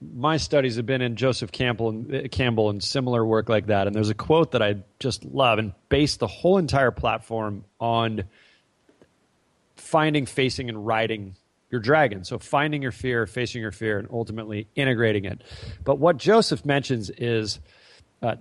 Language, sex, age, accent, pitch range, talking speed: English, male, 30-49, American, 115-145 Hz, 175 wpm